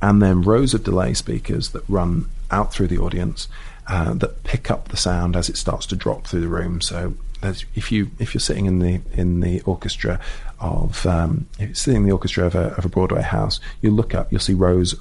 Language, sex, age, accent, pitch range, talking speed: English, male, 40-59, British, 90-135 Hz, 230 wpm